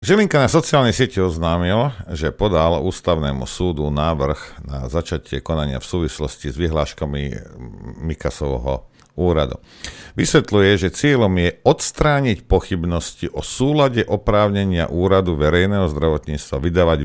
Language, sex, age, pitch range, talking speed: Slovak, male, 50-69, 75-100 Hz, 115 wpm